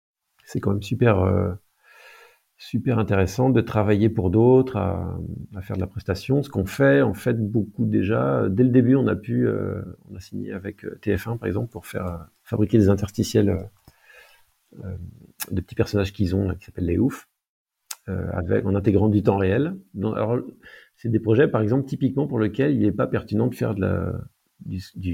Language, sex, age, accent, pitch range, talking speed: French, male, 50-69, French, 95-115 Hz, 165 wpm